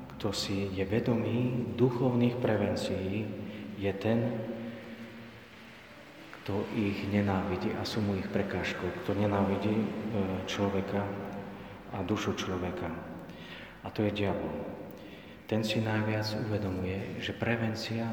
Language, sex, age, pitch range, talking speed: Slovak, male, 40-59, 95-110 Hz, 110 wpm